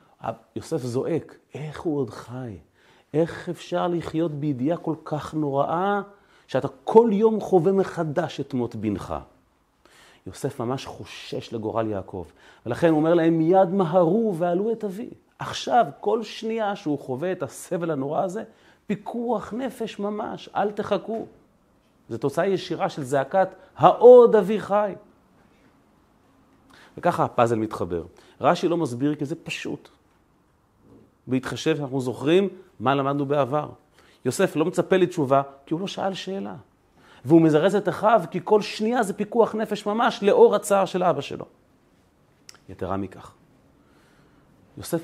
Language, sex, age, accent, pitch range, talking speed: Hebrew, male, 30-49, native, 130-190 Hz, 135 wpm